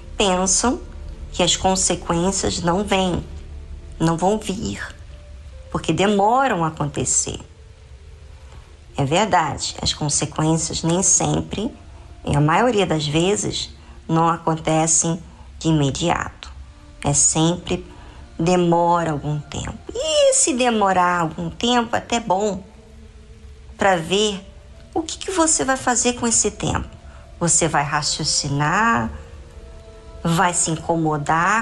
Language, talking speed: Portuguese, 110 wpm